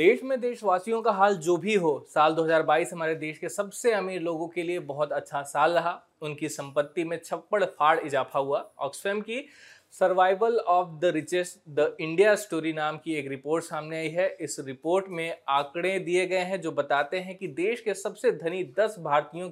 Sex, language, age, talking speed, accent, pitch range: male, Hindi, 20-39, 185 wpm, native, 150-195 Hz